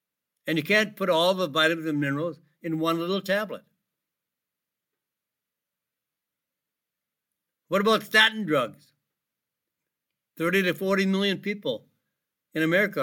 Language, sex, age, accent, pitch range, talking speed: English, male, 60-79, American, 145-195 Hz, 110 wpm